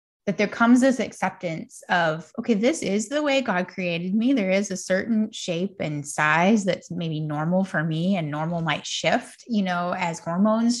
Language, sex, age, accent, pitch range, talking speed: English, female, 20-39, American, 170-235 Hz, 190 wpm